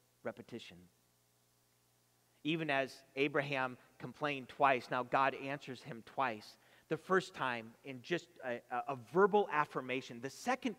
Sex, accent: male, American